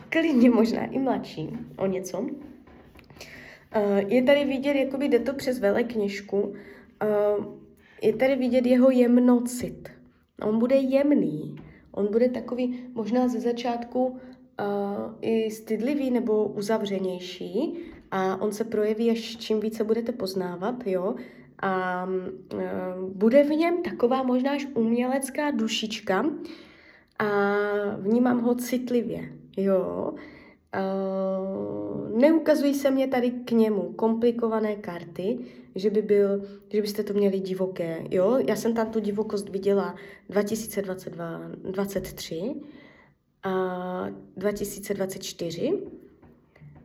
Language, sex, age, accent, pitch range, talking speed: Czech, female, 20-39, native, 200-250 Hz, 100 wpm